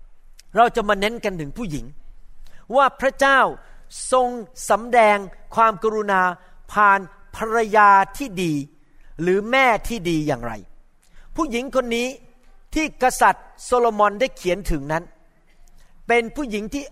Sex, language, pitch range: male, Thai, 180-245 Hz